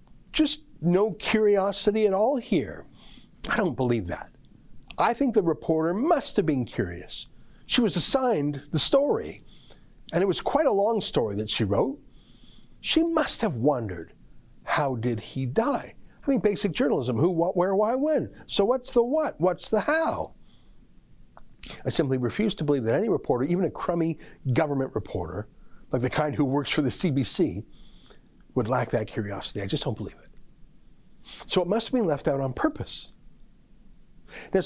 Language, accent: English, American